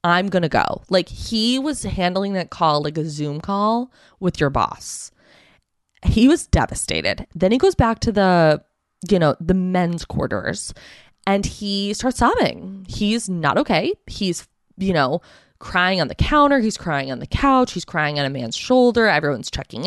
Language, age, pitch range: English, 20-39, 155-215 Hz